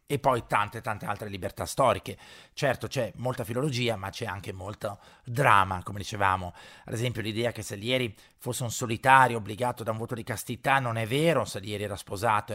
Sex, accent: male, native